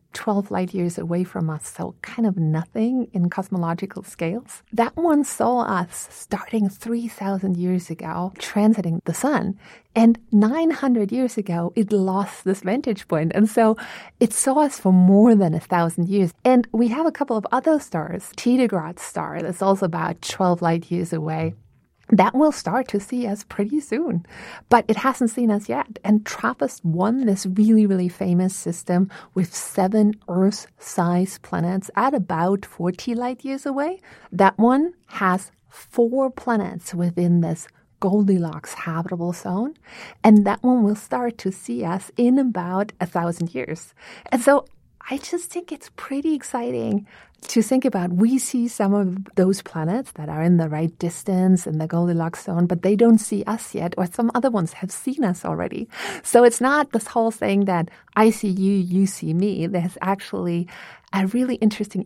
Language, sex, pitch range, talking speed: English, female, 175-235 Hz, 165 wpm